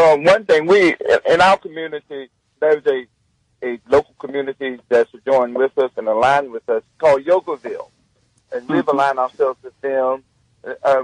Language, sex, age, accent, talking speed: English, male, 50-69, American, 160 wpm